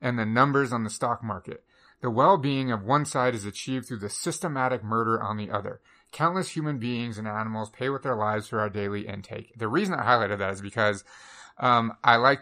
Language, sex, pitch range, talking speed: English, male, 110-130 Hz, 215 wpm